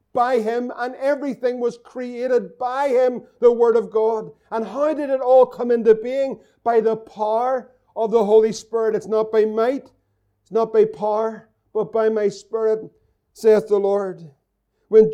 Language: English